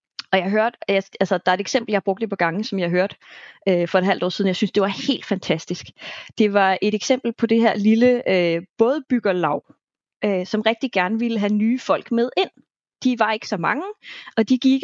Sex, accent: female, native